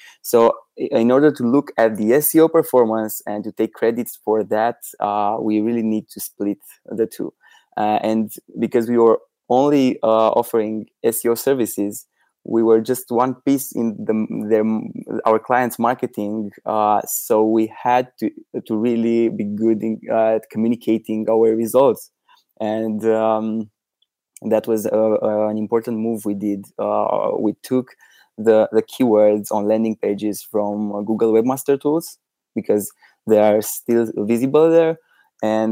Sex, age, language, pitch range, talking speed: male, 20-39, English, 105-120 Hz, 150 wpm